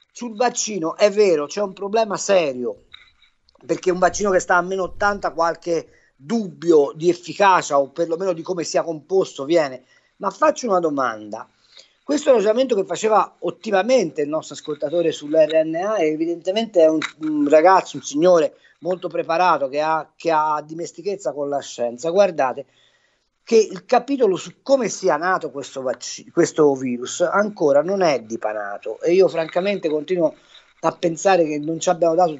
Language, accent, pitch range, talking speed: Italian, native, 150-205 Hz, 155 wpm